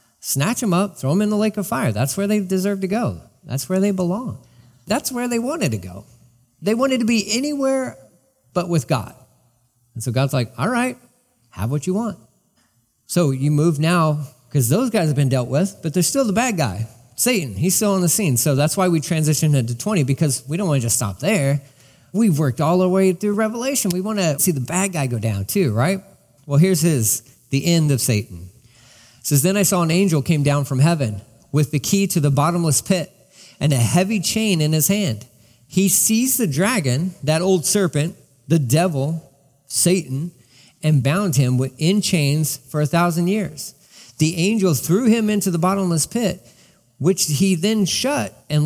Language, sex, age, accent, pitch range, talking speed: English, male, 40-59, American, 135-195 Hz, 200 wpm